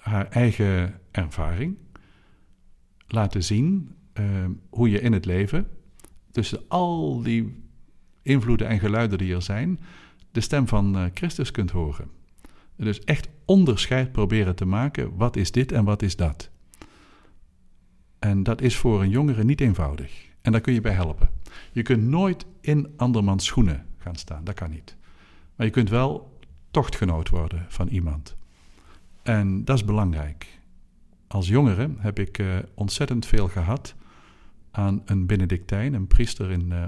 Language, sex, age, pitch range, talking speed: Dutch, male, 50-69, 90-120 Hz, 150 wpm